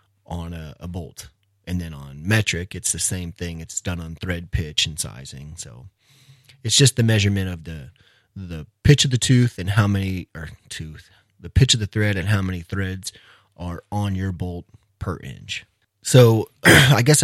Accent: American